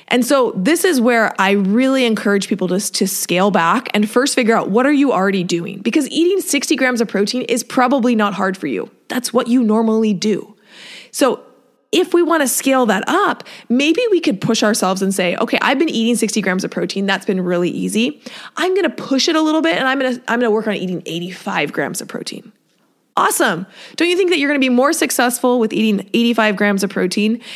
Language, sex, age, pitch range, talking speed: English, female, 20-39, 200-260 Hz, 230 wpm